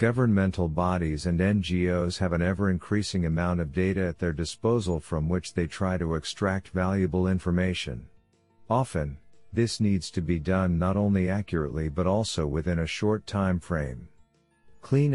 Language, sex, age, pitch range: English, male, 50-69, 85-100 Hz